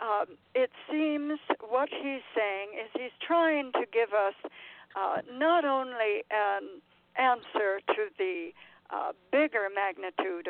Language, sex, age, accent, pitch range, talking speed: English, female, 60-79, American, 205-310 Hz, 125 wpm